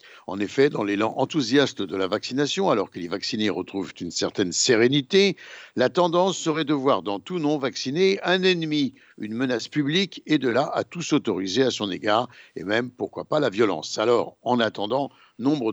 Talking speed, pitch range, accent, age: 185 wpm, 120-165 Hz, French, 60-79